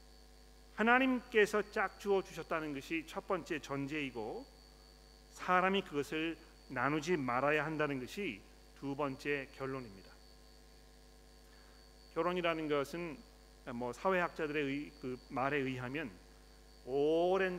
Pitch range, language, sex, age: 140-180 Hz, Korean, male, 40-59